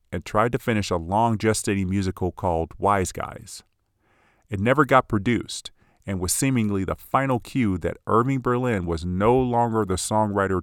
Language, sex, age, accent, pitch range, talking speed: English, male, 40-59, American, 90-110 Hz, 165 wpm